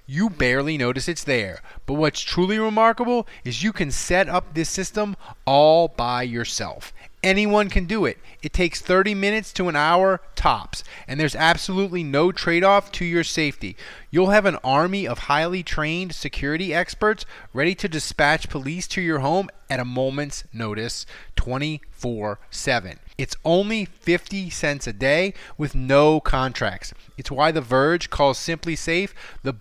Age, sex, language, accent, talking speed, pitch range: 30-49, male, English, American, 155 wpm, 140-195 Hz